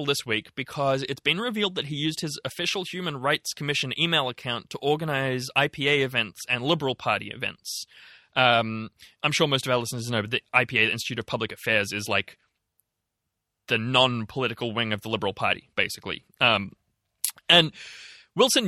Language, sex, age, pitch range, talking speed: English, male, 20-39, 115-155 Hz, 165 wpm